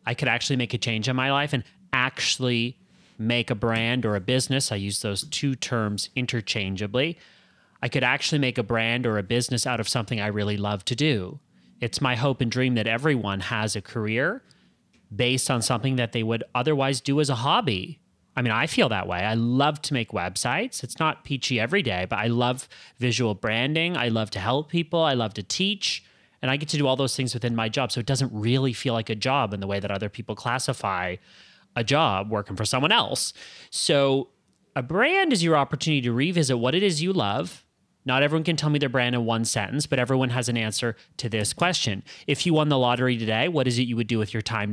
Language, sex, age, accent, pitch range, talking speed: English, male, 30-49, American, 110-135 Hz, 225 wpm